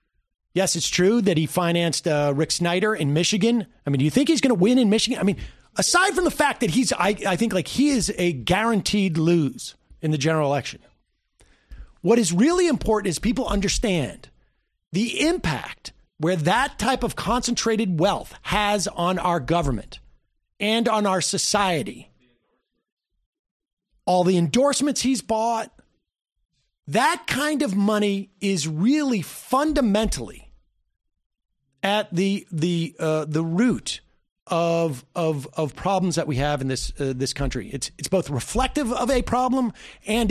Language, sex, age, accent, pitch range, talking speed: English, male, 40-59, American, 165-235 Hz, 155 wpm